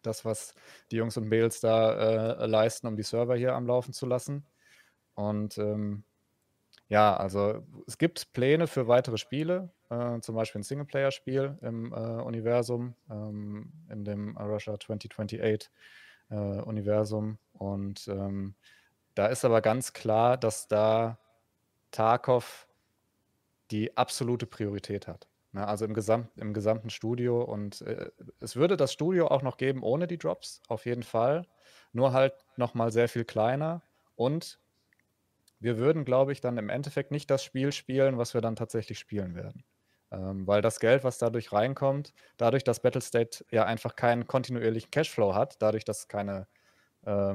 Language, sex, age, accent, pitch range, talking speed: German, male, 20-39, German, 105-125 Hz, 150 wpm